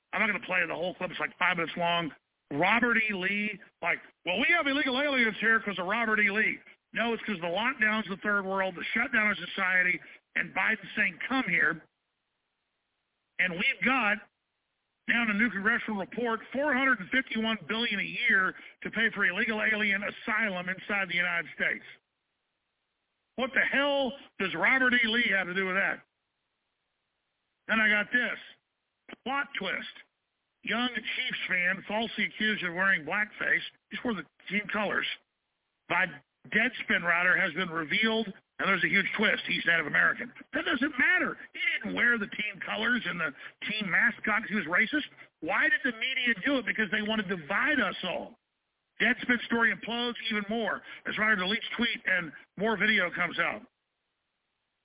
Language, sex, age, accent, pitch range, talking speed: English, male, 50-69, American, 190-240 Hz, 175 wpm